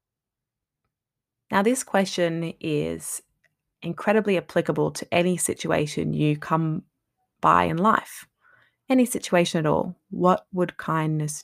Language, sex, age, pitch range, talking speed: English, female, 20-39, 150-185 Hz, 110 wpm